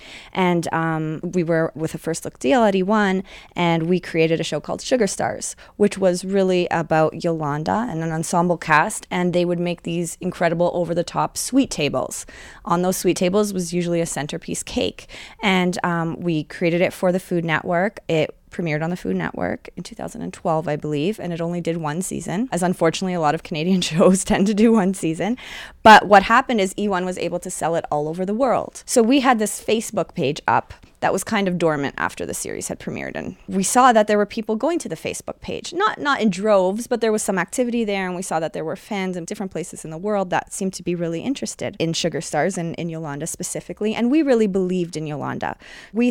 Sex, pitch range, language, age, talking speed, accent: female, 165-200 Hz, English, 20-39, 225 wpm, American